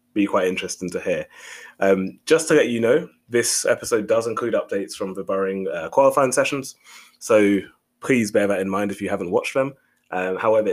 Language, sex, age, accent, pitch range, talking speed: English, male, 20-39, British, 100-145 Hz, 190 wpm